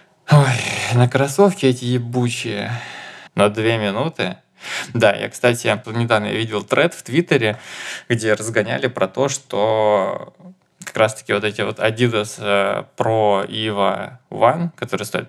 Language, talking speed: Russian, 130 wpm